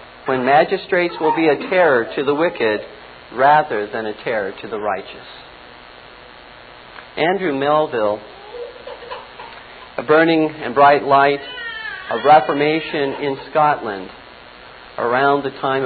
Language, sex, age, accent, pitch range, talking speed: English, male, 50-69, American, 115-190 Hz, 115 wpm